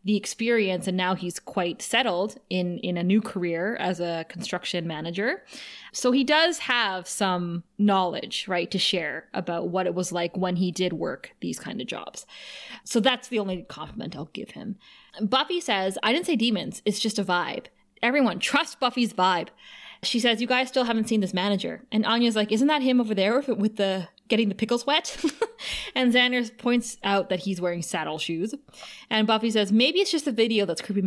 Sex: female